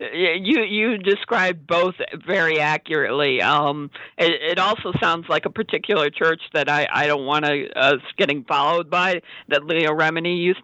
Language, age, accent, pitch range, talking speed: English, 50-69, American, 160-200 Hz, 165 wpm